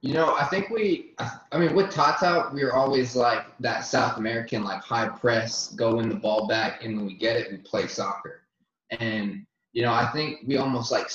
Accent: American